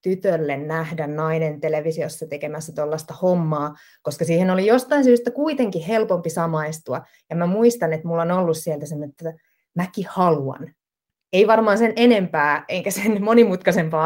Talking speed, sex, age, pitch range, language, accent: 145 wpm, female, 20-39, 155-185 Hz, Finnish, native